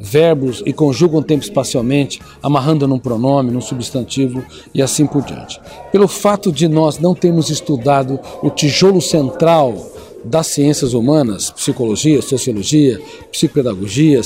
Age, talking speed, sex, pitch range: 60-79, 125 wpm, male, 135-175 Hz